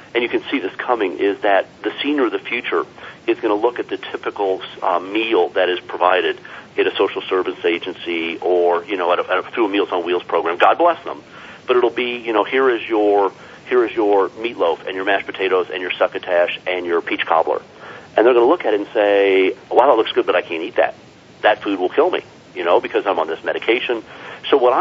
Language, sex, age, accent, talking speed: English, male, 40-59, American, 245 wpm